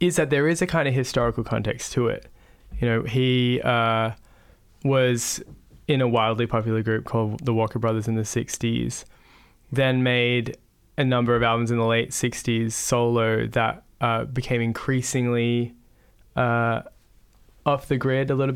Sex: male